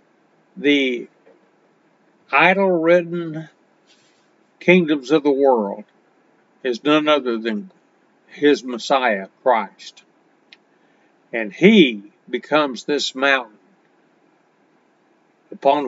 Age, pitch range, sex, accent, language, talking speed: 60-79, 120-155 Hz, male, American, English, 70 wpm